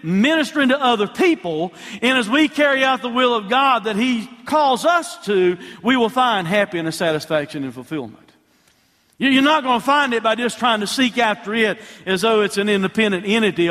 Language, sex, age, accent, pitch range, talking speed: English, male, 50-69, American, 180-250 Hz, 195 wpm